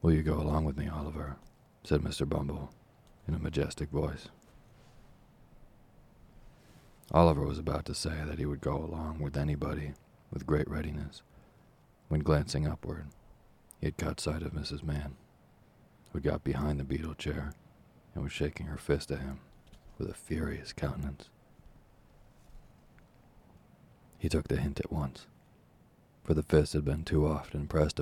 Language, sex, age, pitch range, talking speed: English, male, 40-59, 75-80 Hz, 150 wpm